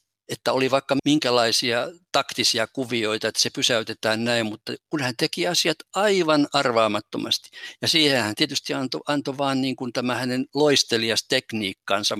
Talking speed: 145 wpm